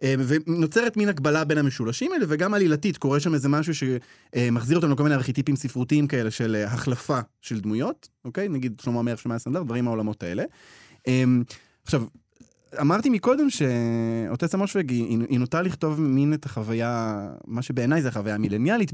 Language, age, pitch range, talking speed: Hebrew, 20-39, 115-160 Hz, 155 wpm